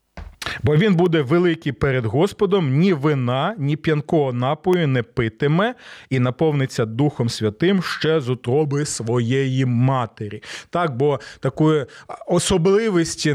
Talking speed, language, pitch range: 115 wpm, Ukrainian, 130-165 Hz